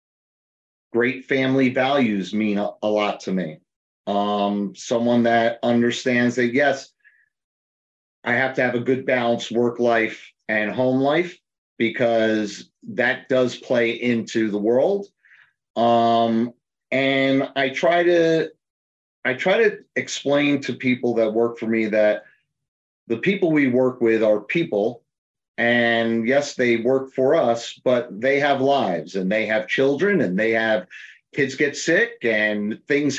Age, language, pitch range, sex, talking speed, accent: 30-49, English, 115-145 Hz, male, 135 wpm, American